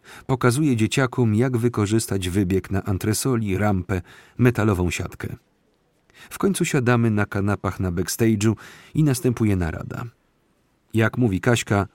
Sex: male